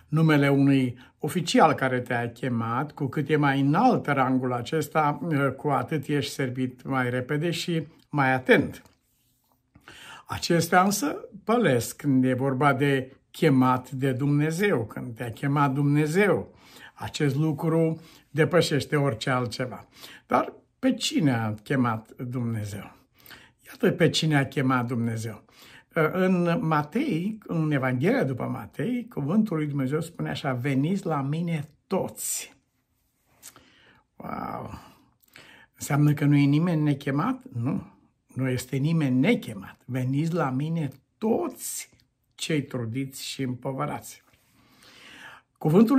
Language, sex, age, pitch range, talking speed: Romanian, male, 60-79, 130-160 Hz, 115 wpm